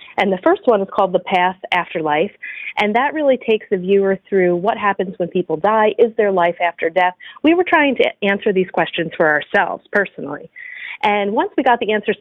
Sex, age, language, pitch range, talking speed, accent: female, 40-59, English, 180-225 Hz, 210 wpm, American